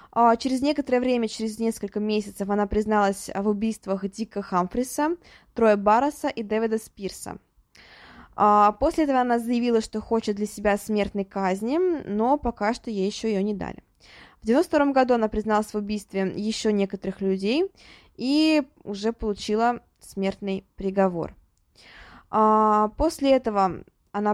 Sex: female